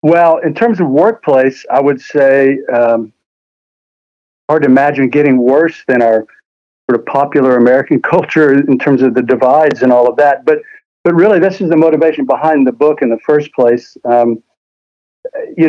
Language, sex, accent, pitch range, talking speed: English, male, American, 125-155 Hz, 175 wpm